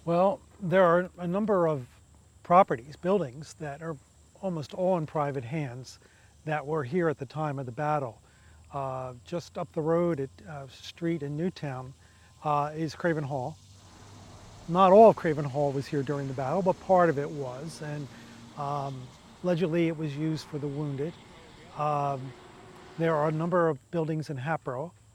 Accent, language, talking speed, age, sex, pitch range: American, English, 170 wpm, 40-59, male, 135-165 Hz